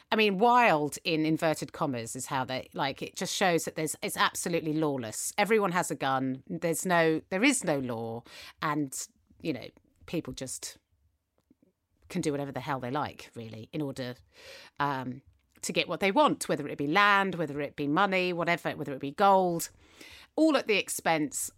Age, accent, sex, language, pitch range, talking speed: 40-59, British, female, English, 130-185 Hz, 185 wpm